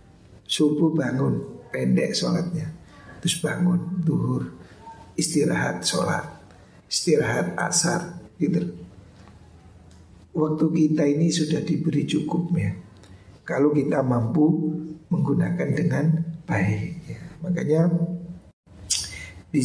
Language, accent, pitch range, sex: Indonesian, native, 100-170 Hz, male